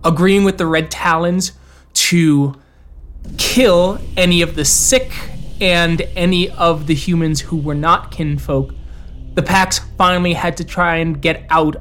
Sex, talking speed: male, 145 wpm